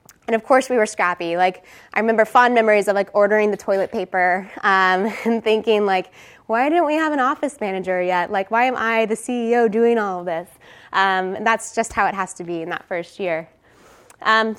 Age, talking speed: 20-39, 220 wpm